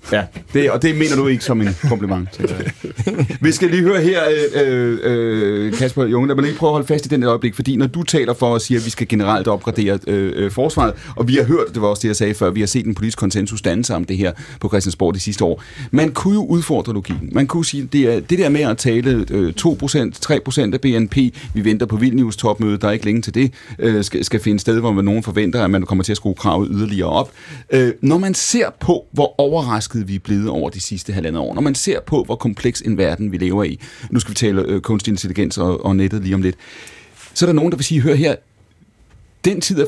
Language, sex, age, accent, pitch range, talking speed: Danish, male, 30-49, native, 105-140 Hz, 255 wpm